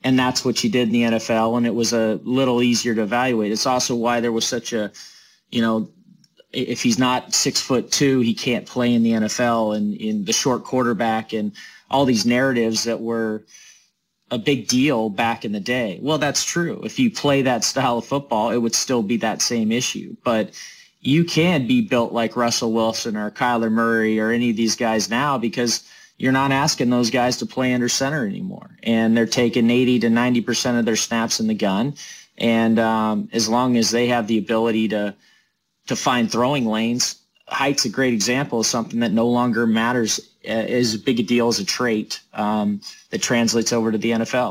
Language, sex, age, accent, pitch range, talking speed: English, male, 30-49, American, 115-130 Hz, 205 wpm